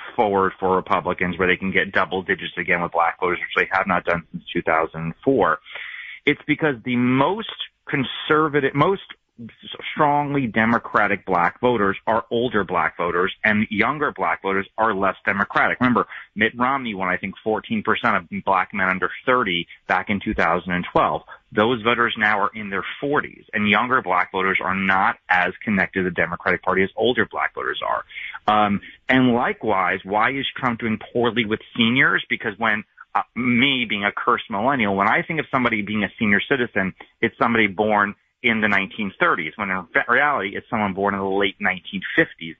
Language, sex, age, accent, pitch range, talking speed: English, male, 30-49, American, 95-120 Hz, 175 wpm